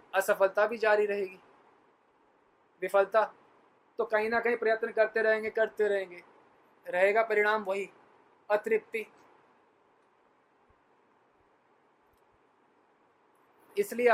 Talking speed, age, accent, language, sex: 80 wpm, 20-39, native, Hindi, male